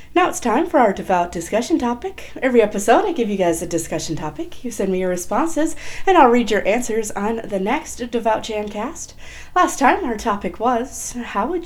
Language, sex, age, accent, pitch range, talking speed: English, female, 30-49, American, 170-240 Hz, 205 wpm